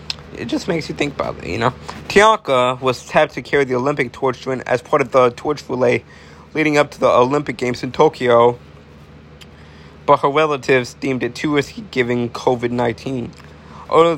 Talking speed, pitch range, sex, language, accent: 180 wpm, 80-135 Hz, male, English, American